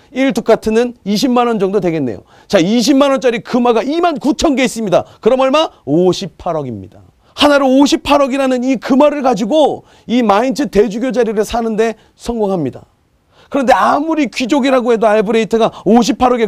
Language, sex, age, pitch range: Korean, male, 40-59, 155-245 Hz